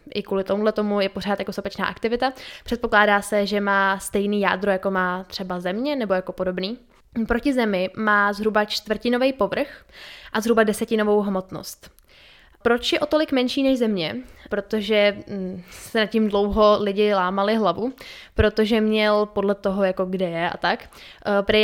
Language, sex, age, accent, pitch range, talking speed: Czech, female, 10-29, native, 195-230 Hz, 155 wpm